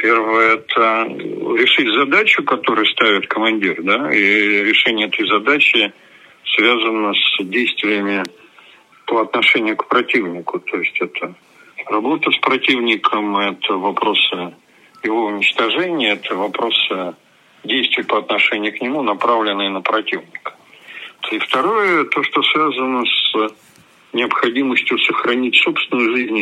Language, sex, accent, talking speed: Russian, male, native, 110 wpm